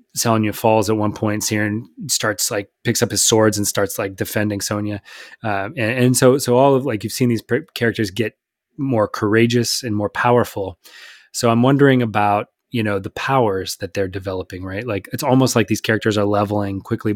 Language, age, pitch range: English, 20-39, 100-115 Hz